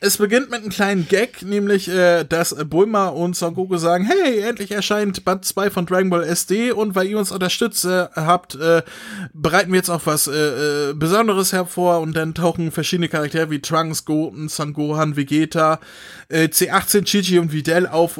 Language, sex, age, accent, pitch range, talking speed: German, male, 20-39, German, 155-185 Hz, 185 wpm